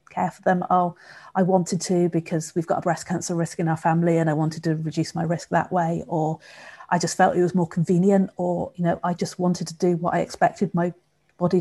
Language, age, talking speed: English, 40-59, 245 wpm